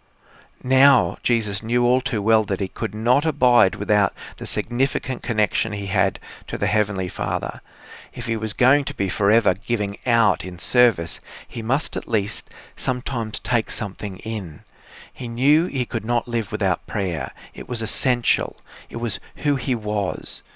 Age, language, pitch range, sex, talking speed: 50-69, English, 100-125 Hz, male, 165 wpm